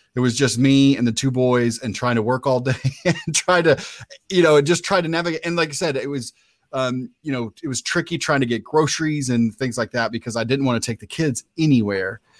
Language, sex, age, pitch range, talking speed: English, male, 30-49, 110-135 Hz, 250 wpm